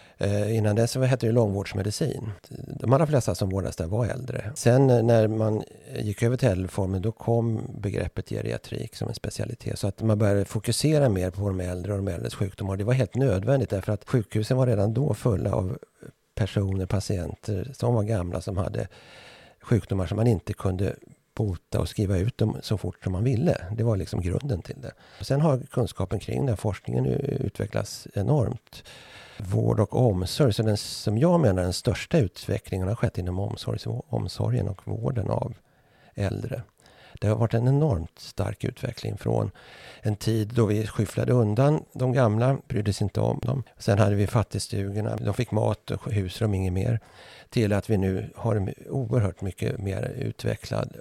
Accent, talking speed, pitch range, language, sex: native, 175 wpm, 100-125 Hz, Swedish, male